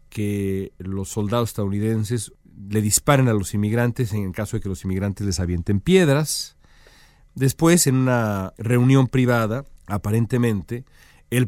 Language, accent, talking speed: Spanish, Mexican, 135 wpm